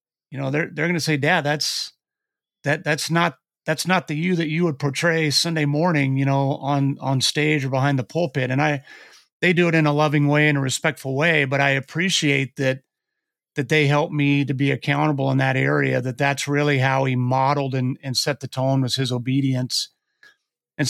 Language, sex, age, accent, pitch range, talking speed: English, male, 40-59, American, 140-160 Hz, 210 wpm